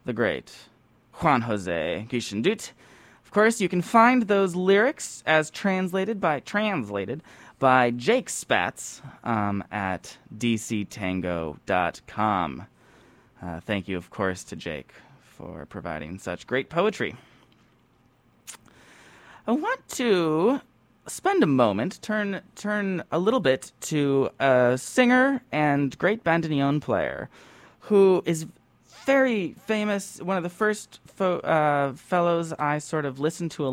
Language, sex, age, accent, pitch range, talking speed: English, male, 20-39, American, 120-185 Hz, 125 wpm